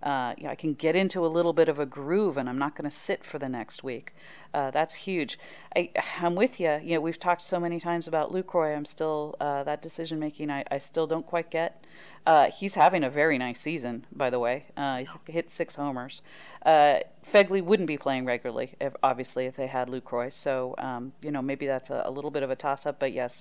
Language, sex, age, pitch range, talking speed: English, female, 40-59, 140-185 Hz, 235 wpm